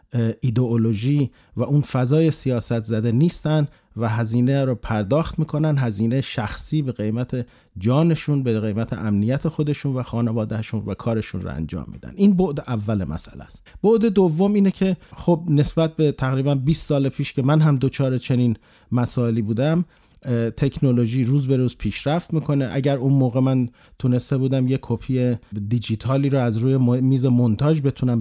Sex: male